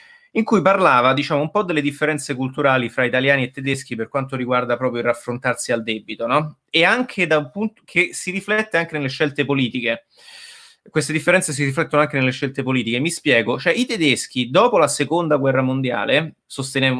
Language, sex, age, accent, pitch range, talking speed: Italian, male, 20-39, native, 130-160 Hz, 185 wpm